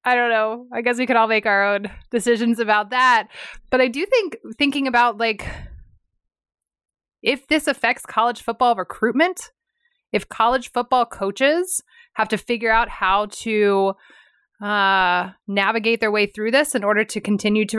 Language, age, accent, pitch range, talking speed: English, 20-39, American, 190-235 Hz, 160 wpm